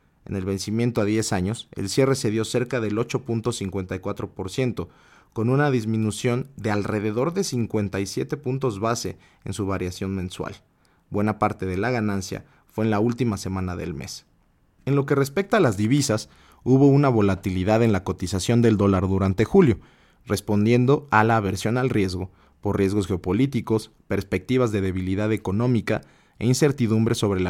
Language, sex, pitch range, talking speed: Spanish, male, 95-125 Hz, 155 wpm